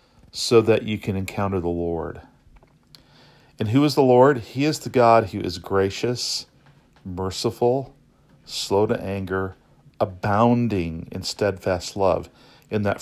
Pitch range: 95-115 Hz